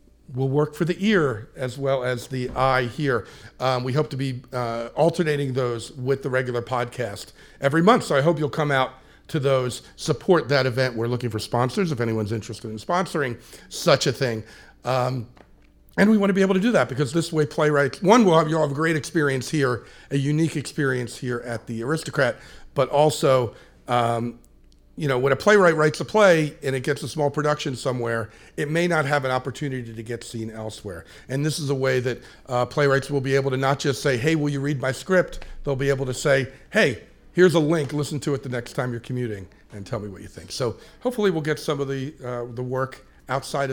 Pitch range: 120-150 Hz